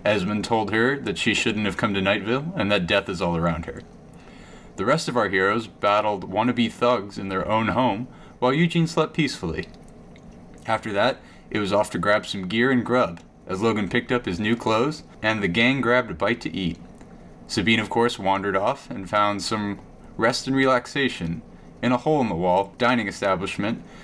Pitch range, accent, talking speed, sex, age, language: 100-125 Hz, American, 195 wpm, male, 30-49, English